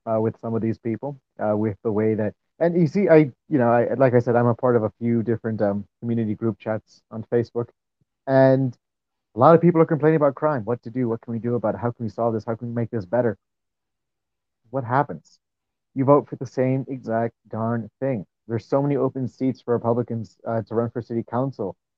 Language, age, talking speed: English, 30-49, 230 wpm